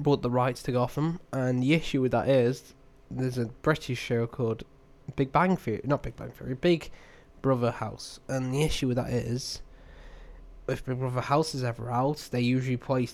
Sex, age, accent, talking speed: male, 10-29, British, 190 wpm